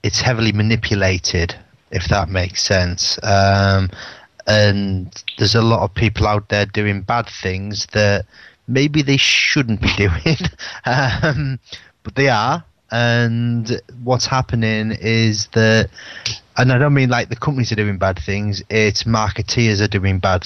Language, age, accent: English, 30-49, British